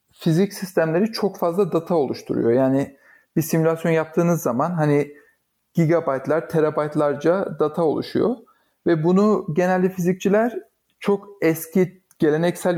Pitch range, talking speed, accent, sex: 150-180 Hz, 110 wpm, native, male